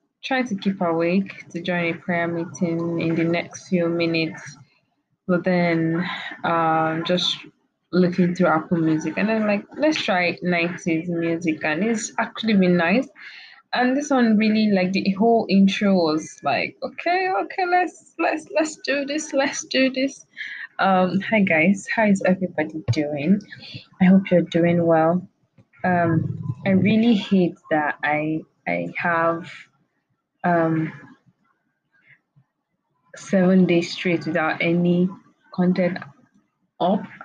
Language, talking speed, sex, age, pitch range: English, 130 wpm, female, 20-39, 160-195 Hz